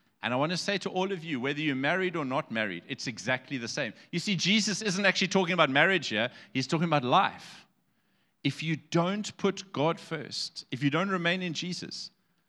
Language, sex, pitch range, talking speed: English, male, 110-165 Hz, 210 wpm